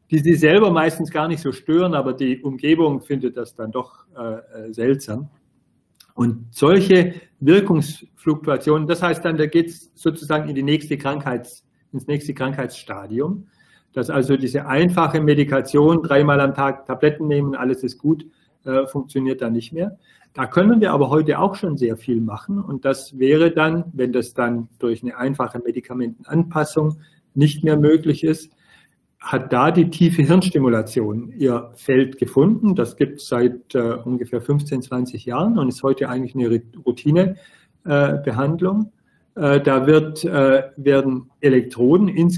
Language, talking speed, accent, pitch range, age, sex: German, 145 wpm, German, 125-160 Hz, 40-59, male